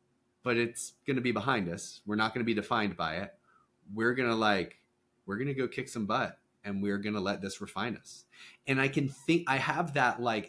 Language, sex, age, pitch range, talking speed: English, male, 30-49, 105-125 Hz, 240 wpm